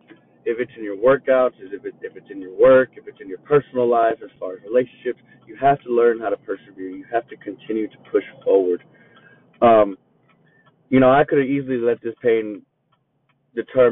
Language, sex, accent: English, male, American